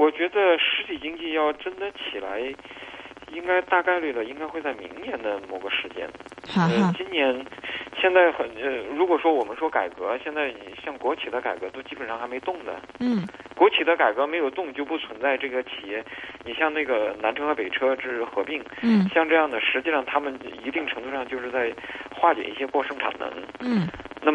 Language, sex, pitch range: Chinese, male, 135-185 Hz